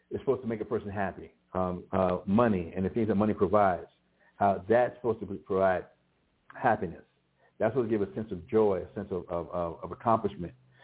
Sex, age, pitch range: male, 60-79, 95-110 Hz